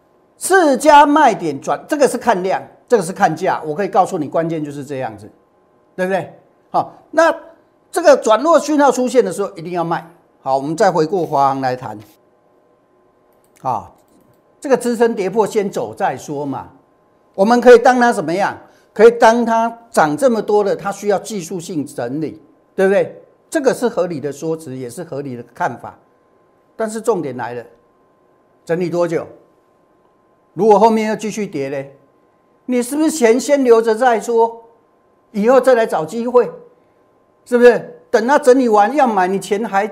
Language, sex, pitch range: Chinese, male, 160-245 Hz